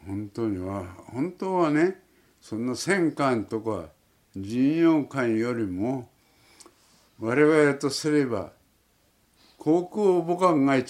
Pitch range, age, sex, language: 105-160 Hz, 60-79, male, Japanese